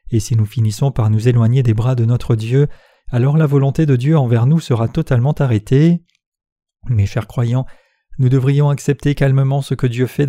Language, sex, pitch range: French, male, 115-140 Hz